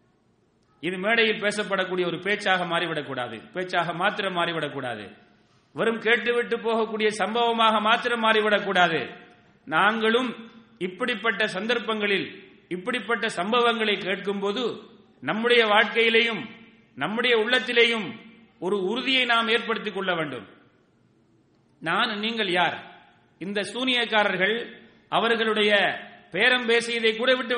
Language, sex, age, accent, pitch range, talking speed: English, male, 40-59, Indian, 190-230 Hz, 100 wpm